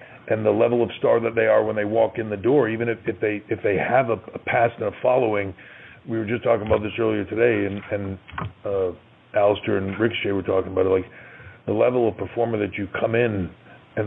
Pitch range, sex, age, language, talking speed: 100-115 Hz, male, 40-59, English, 230 wpm